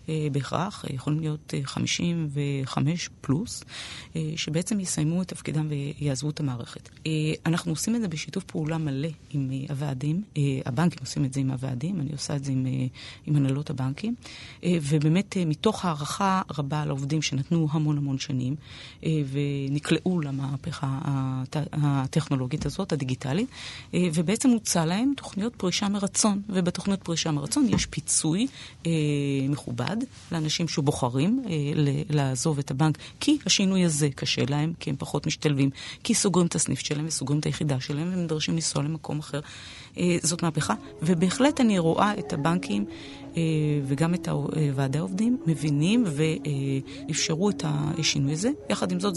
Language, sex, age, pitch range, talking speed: Hebrew, female, 30-49, 140-170 Hz, 135 wpm